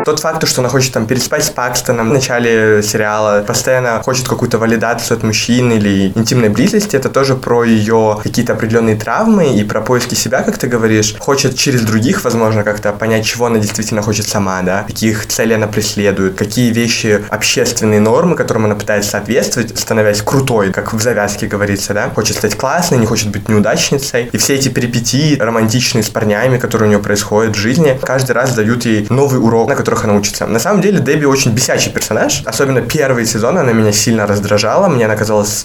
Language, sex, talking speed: Russian, male, 190 wpm